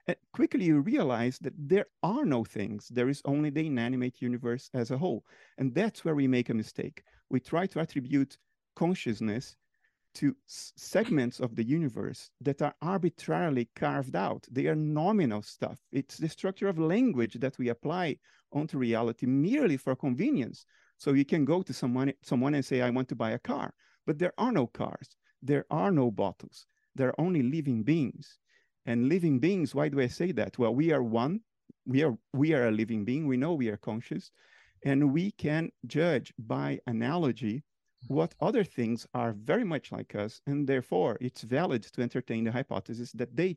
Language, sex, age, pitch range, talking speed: English, male, 40-59, 115-155 Hz, 185 wpm